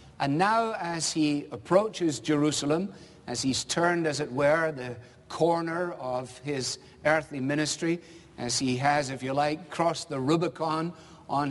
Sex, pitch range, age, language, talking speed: male, 125-160 Hz, 50-69, English, 145 wpm